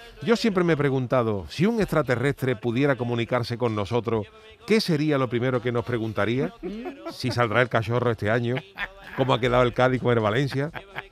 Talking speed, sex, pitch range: 175 wpm, male, 120-155 Hz